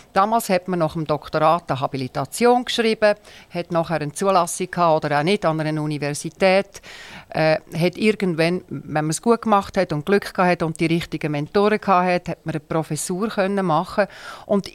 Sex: female